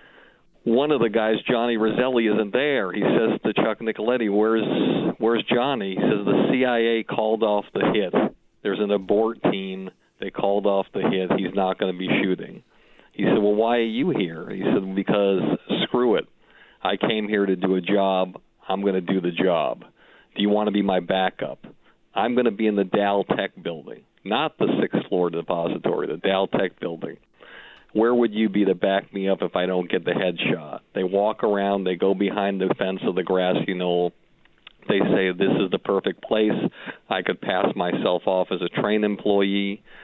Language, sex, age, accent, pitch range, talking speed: English, male, 50-69, American, 95-110 Hz, 195 wpm